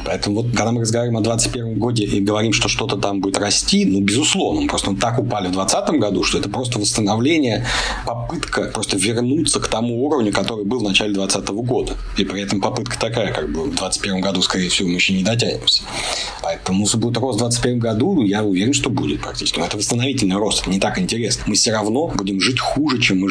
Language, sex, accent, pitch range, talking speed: Russian, male, native, 95-115 Hz, 220 wpm